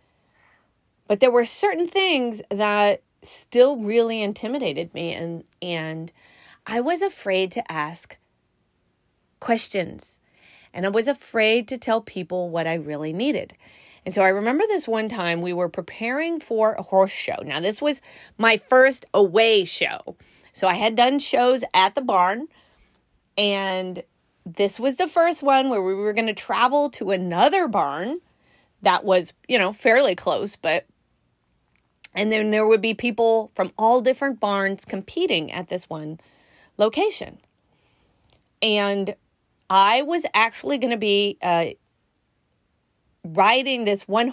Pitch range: 185-245 Hz